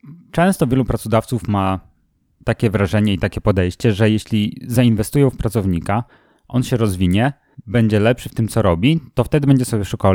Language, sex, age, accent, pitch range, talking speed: Polish, male, 30-49, native, 100-125 Hz, 165 wpm